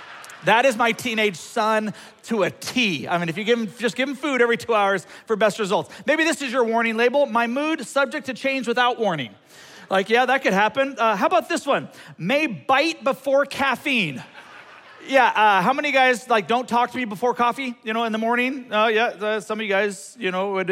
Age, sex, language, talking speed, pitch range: 40-59, male, English, 225 wpm, 220-275 Hz